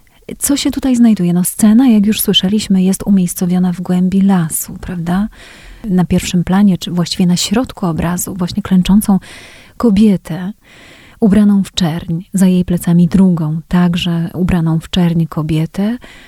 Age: 30-49